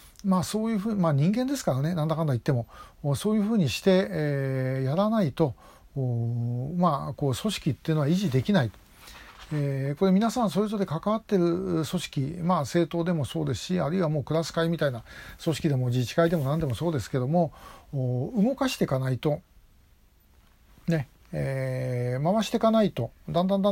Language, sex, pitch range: Japanese, male, 135-185 Hz